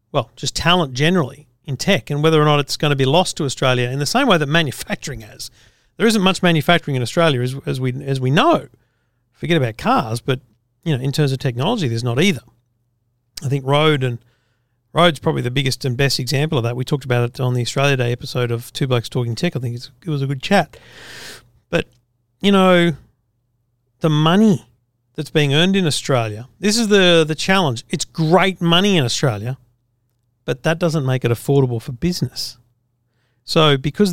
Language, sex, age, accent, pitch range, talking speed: English, male, 40-59, Australian, 120-160 Hz, 200 wpm